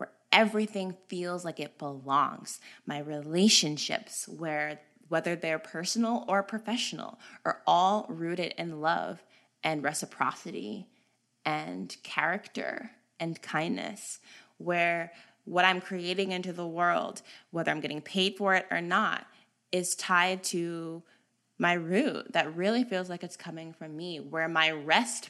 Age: 20-39